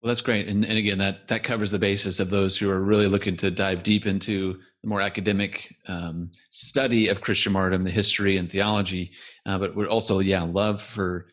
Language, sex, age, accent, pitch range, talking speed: English, male, 30-49, American, 95-110 Hz, 215 wpm